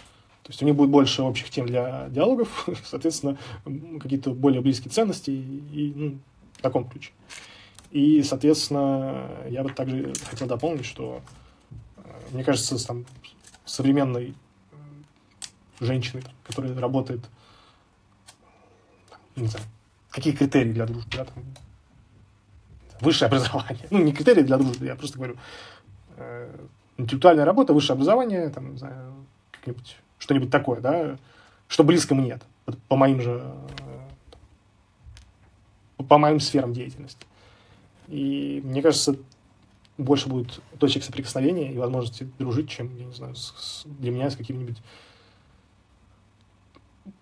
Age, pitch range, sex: 20-39, 110-140 Hz, male